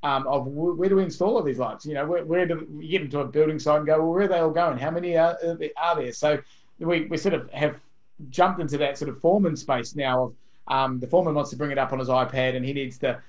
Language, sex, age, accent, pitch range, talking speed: English, male, 30-49, Australian, 130-155 Hz, 285 wpm